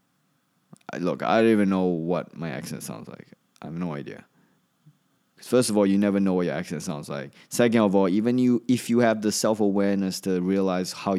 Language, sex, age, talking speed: English, male, 20-39, 210 wpm